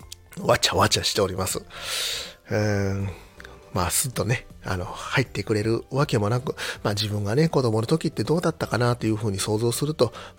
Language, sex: Japanese, male